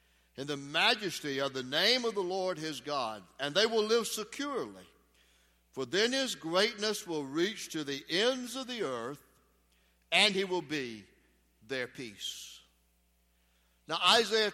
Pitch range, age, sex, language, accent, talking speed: 135-195 Hz, 60-79, male, English, American, 150 wpm